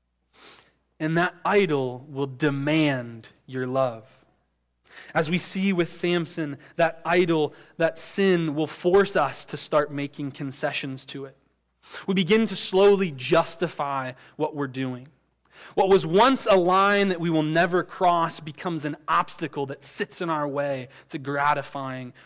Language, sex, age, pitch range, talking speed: English, male, 20-39, 130-170 Hz, 145 wpm